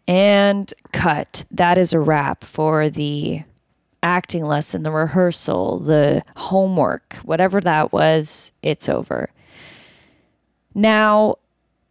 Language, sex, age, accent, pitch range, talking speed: English, female, 20-39, American, 150-210 Hz, 100 wpm